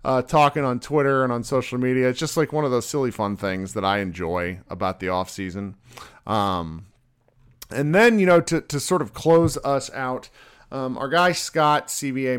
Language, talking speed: English, 190 wpm